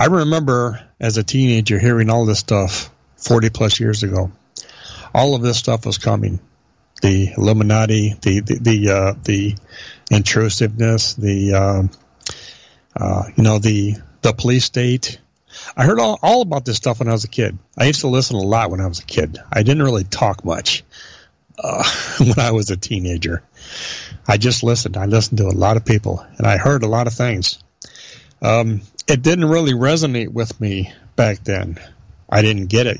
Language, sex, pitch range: English, male, 100-120 Hz